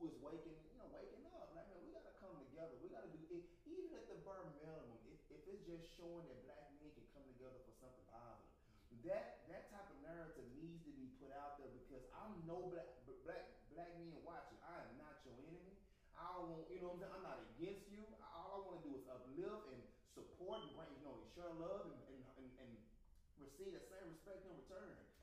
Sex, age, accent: male, 30-49, American